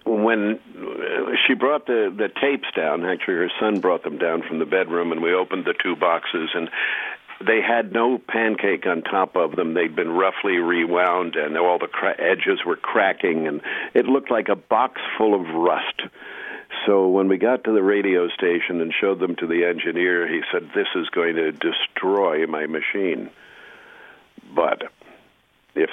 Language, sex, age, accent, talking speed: English, male, 60-79, American, 175 wpm